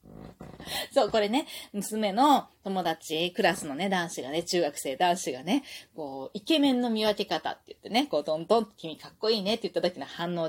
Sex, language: female, Japanese